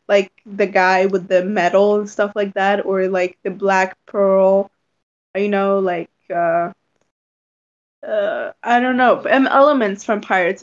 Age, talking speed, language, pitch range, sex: 10-29, 150 wpm, English, 200-245 Hz, female